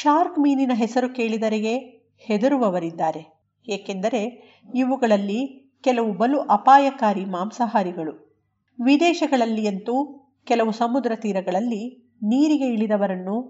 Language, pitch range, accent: Kannada, 190-255 Hz, native